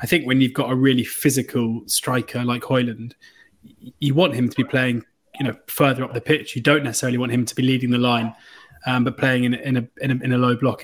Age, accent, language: 20-39, British, English